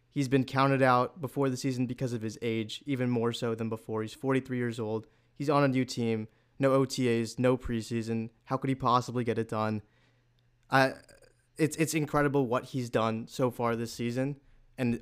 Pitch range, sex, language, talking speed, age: 115-135 Hz, male, English, 190 wpm, 20-39